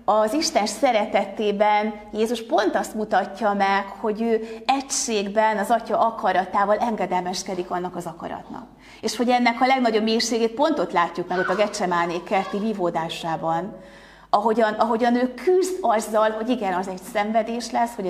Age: 30-49